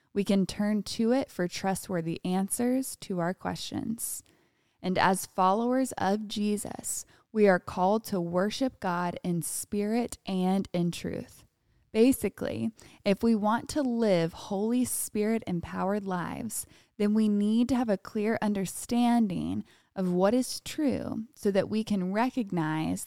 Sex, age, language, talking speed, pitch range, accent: female, 20-39, English, 140 wpm, 185-230 Hz, American